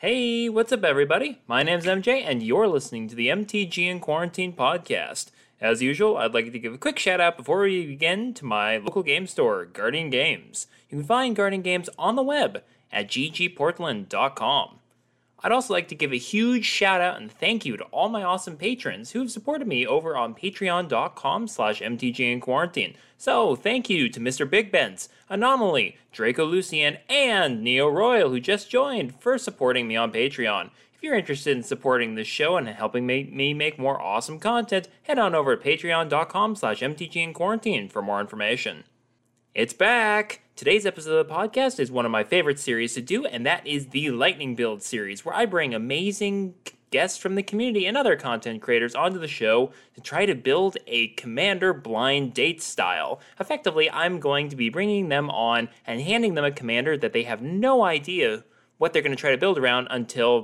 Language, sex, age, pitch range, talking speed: English, male, 20-39, 125-215 Hz, 185 wpm